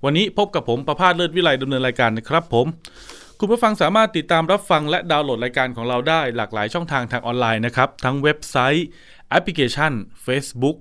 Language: Thai